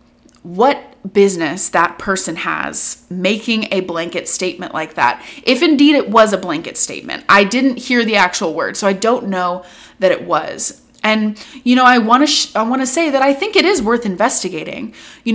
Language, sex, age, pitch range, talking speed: English, female, 20-39, 185-240 Hz, 190 wpm